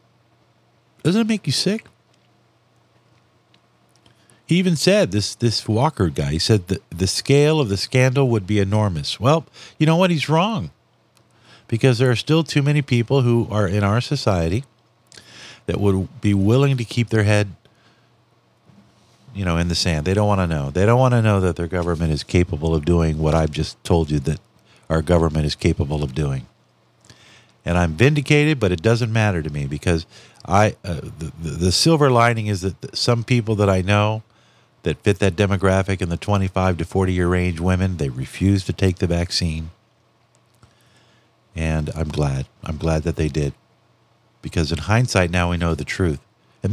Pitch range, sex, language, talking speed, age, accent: 90-140 Hz, male, English, 180 wpm, 50-69, American